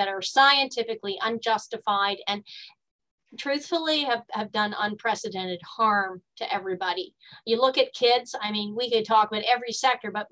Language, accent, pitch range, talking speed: English, American, 195-250 Hz, 150 wpm